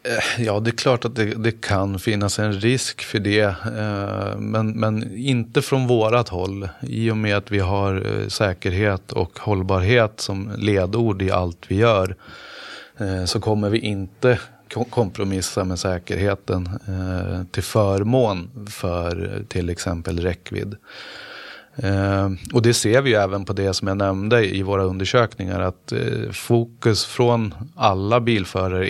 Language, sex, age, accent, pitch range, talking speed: Swedish, male, 30-49, native, 95-115 Hz, 140 wpm